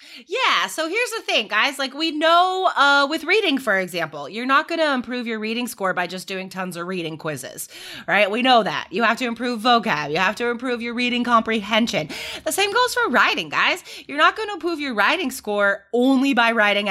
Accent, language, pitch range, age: American, English, 195-315 Hz, 20-39